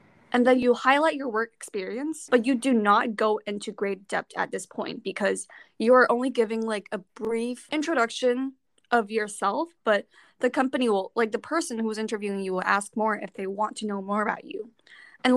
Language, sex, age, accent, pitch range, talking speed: English, female, 10-29, American, 215-270 Hz, 200 wpm